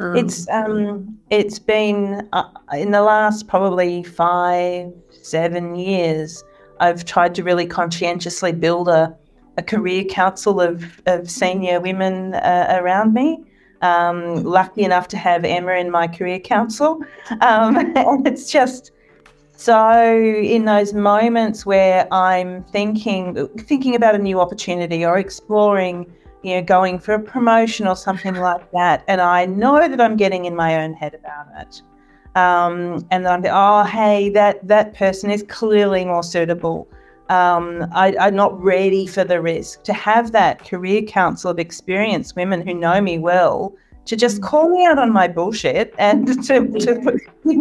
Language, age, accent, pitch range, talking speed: English, 40-59, Australian, 175-215 Hz, 150 wpm